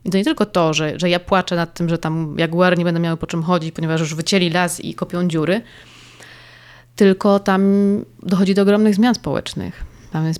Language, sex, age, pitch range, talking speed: Polish, female, 20-39, 165-185 Hz, 210 wpm